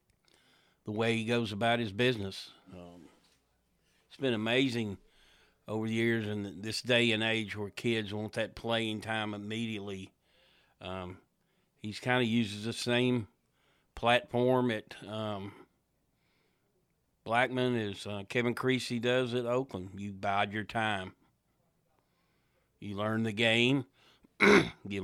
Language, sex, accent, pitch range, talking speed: English, male, American, 105-125 Hz, 125 wpm